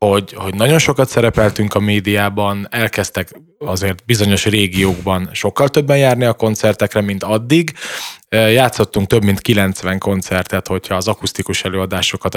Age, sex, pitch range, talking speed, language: 20-39, male, 95-115 Hz, 130 wpm, Hungarian